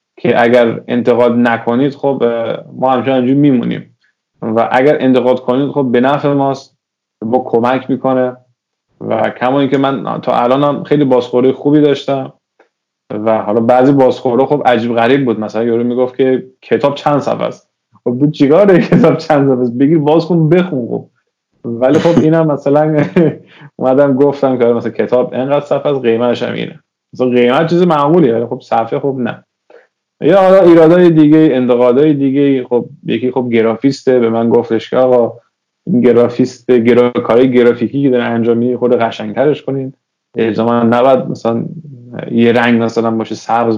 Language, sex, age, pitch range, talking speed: Persian, male, 20-39, 115-140 Hz, 150 wpm